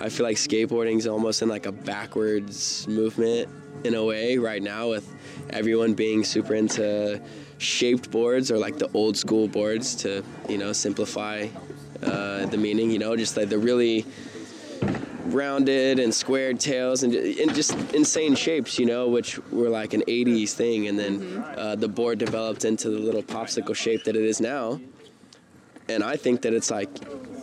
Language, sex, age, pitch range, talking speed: English, male, 20-39, 105-120 Hz, 175 wpm